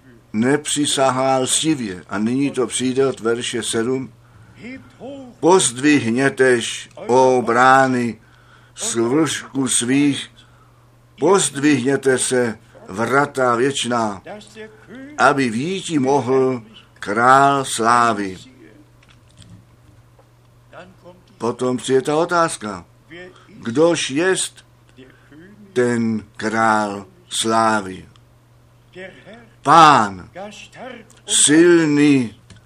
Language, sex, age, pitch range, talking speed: Czech, male, 60-79, 115-145 Hz, 60 wpm